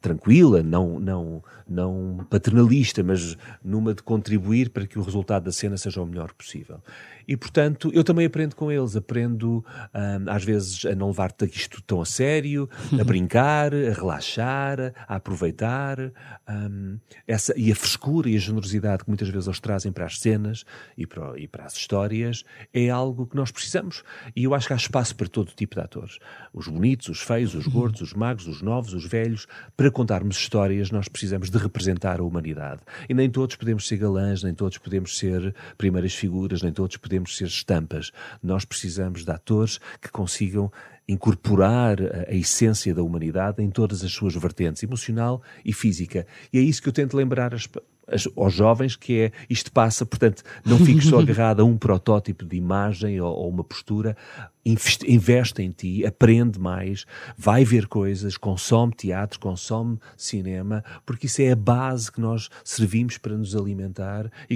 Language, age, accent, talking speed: Portuguese, 40-59, Portuguese, 175 wpm